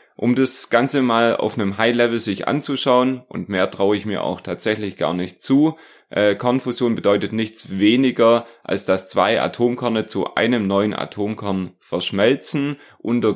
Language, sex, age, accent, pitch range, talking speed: German, male, 30-49, German, 95-125 Hz, 155 wpm